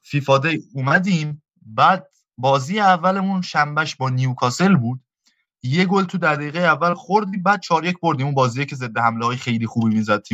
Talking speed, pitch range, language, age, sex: 155 wpm, 120-175 Hz, Persian, 20-39, male